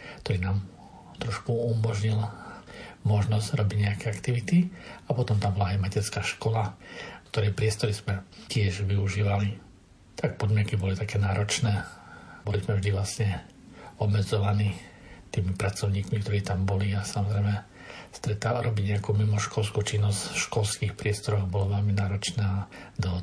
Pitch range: 100-110 Hz